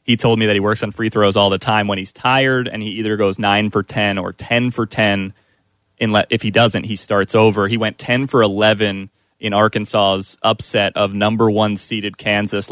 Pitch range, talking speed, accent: 100-110 Hz, 180 wpm, American